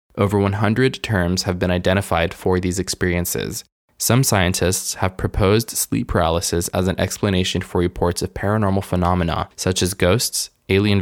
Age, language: 20-39, English